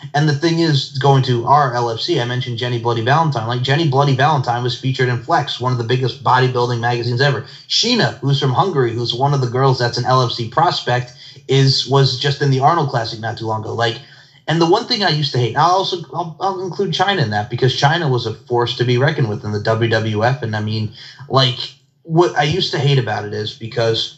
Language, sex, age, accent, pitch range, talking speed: English, male, 30-49, American, 125-160 Hz, 235 wpm